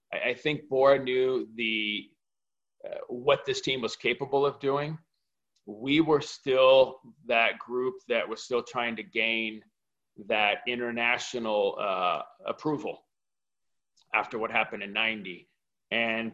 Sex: male